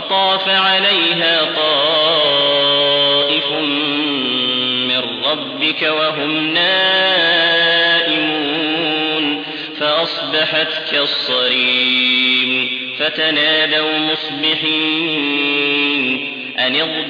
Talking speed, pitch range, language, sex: 40 wpm, 145-160 Hz, English, male